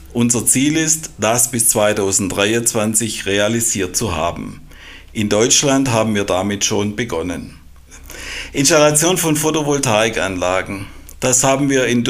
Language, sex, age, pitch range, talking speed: German, male, 60-79, 100-130 Hz, 115 wpm